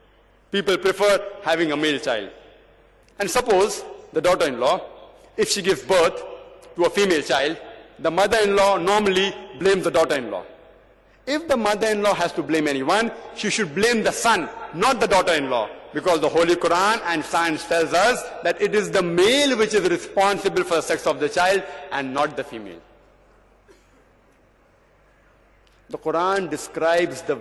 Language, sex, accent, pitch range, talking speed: English, male, Indian, 165-225 Hz, 150 wpm